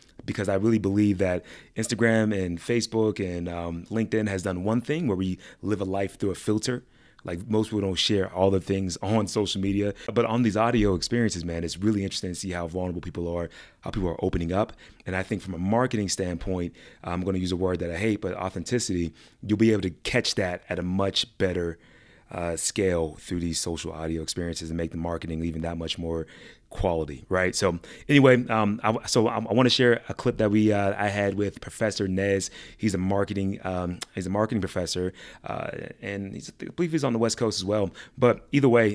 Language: English